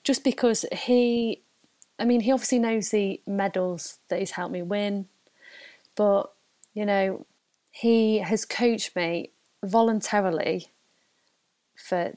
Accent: British